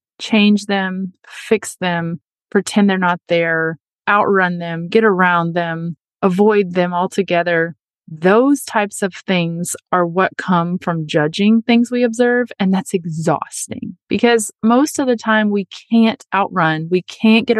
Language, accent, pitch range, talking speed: English, American, 175-225 Hz, 145 wpm